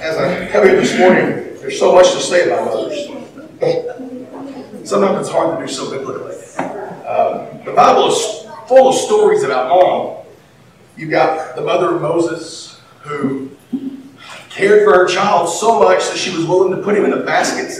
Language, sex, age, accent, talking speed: English, male, 40-59, American, 170 wpm